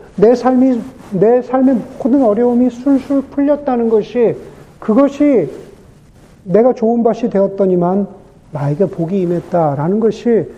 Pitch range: 165-225 Hz